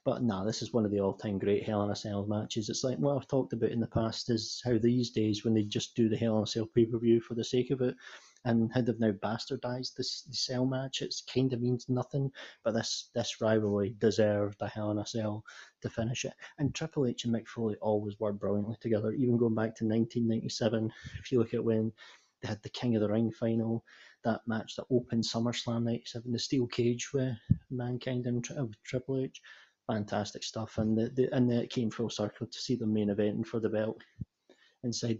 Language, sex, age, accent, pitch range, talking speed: English, male, 30-49, British, 110-125 Hz, 225 wpm